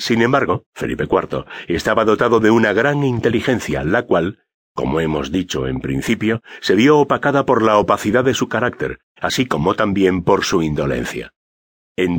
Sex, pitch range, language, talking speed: male, 95-125 Hz, Spanish, 165 wpm